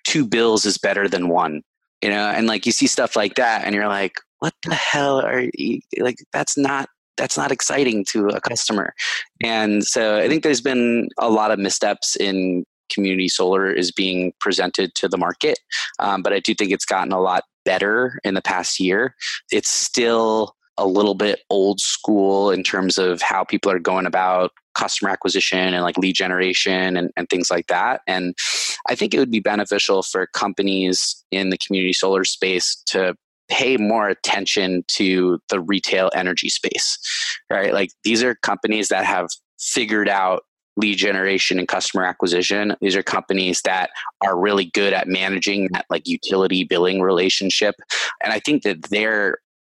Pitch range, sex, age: 95-110 Hz, male, 20-39